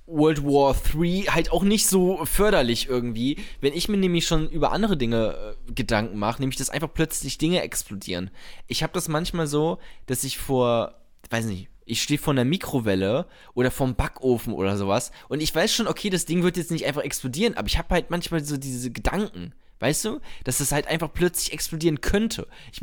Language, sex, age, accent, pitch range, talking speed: German, male, 20-39, German, 120-170 Hz, 200 wpm